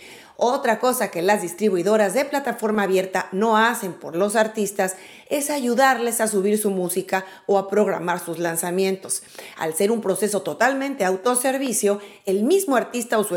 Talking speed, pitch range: 155 wpm, 190-245 Hz